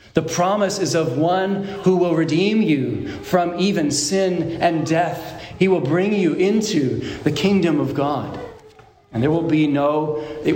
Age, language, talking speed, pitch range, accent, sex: 40-59, English, 165 wpm, 145-185 Hz, American, male